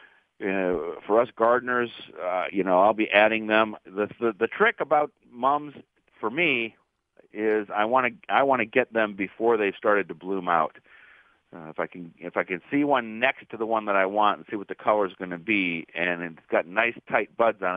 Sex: male